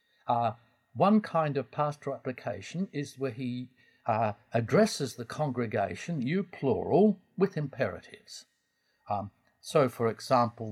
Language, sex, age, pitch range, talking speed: English, male, 60-79, 115-175 Hz, 120 wpm